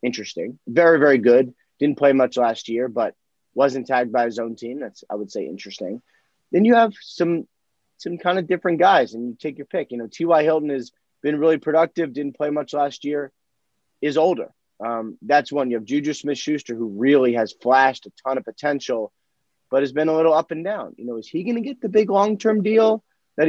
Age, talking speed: 30-49, 215 wpm